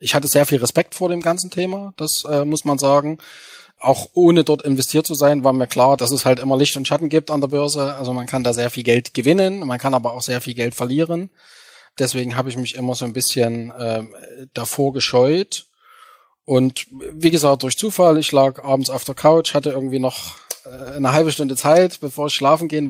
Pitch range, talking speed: 130-155 Hz, 220 wpm